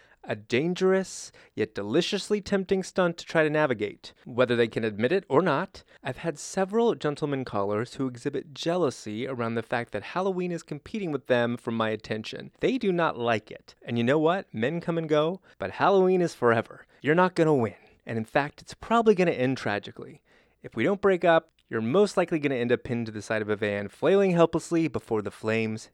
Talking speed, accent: 215 wpm, American